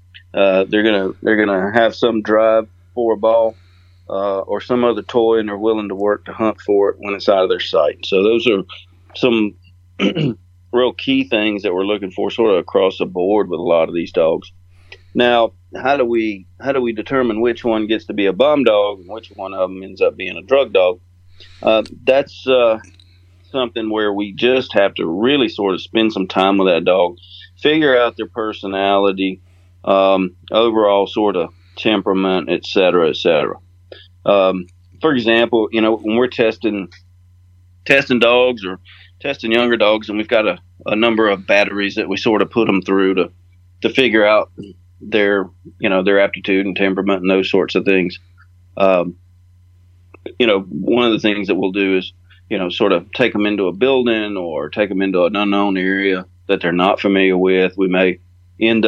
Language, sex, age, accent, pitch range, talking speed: English, male, 40-59, American, 90-110 Hz, 195 wpm